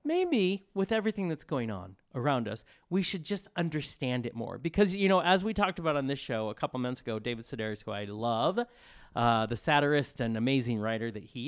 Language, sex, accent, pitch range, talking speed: English, male, American, 120-200 Hz, 215 wpm